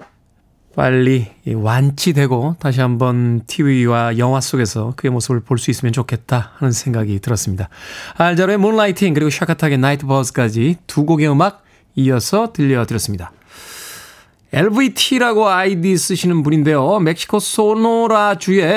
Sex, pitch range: male, 125-185 Hz